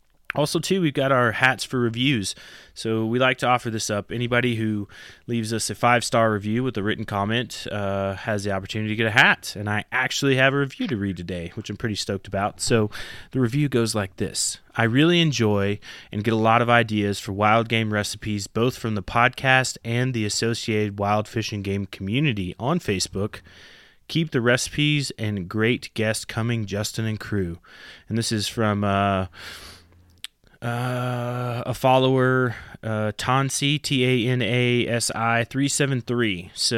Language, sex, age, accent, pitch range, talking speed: English, male, 20-39, American, 105-125 Hz, 180 wpm